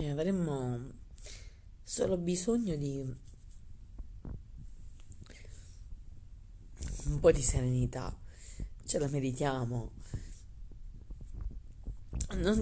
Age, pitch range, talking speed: 40-59, 95-155 Hz, 55 wpm